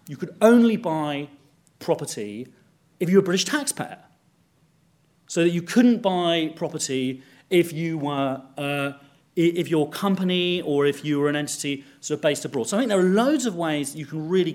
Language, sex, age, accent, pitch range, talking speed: English, male, 30-49, British, 150-200 Hz, 185 wpm